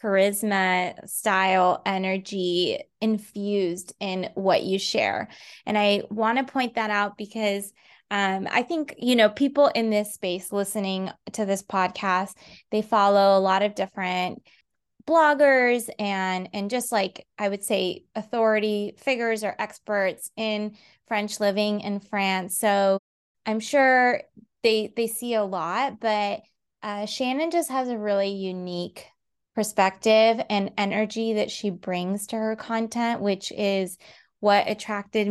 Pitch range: 195-225 Hz